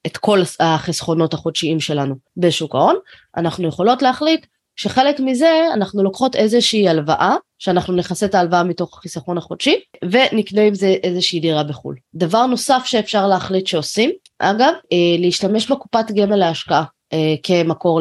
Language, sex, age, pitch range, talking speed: Hebrew, female, 20-39, 160-225 Hz, 135 wpm